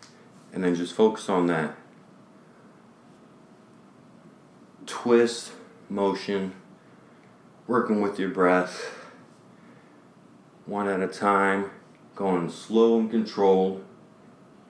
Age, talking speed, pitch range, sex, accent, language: 30-49, 80 wpm, 85-100 Hz, male, American, English